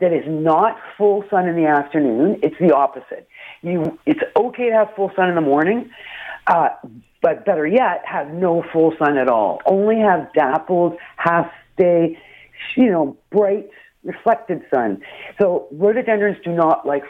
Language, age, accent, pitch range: English, 50-69, American, 150-205 Hz